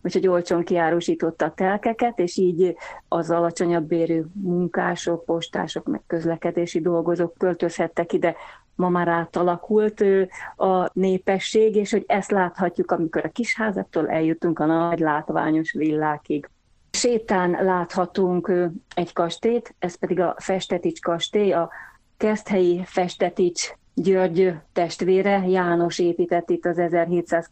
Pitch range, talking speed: 165-190 Hz, 115 wpm